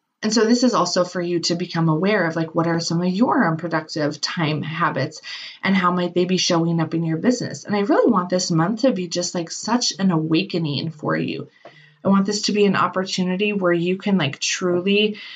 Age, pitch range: 20-39, 175-215 Hz